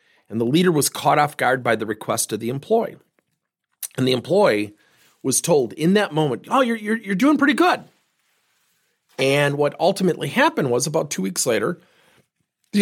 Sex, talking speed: male, 180 wpm